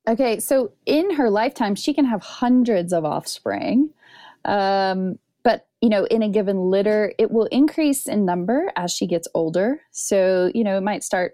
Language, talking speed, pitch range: English, 180 wpm, 180-230 Hz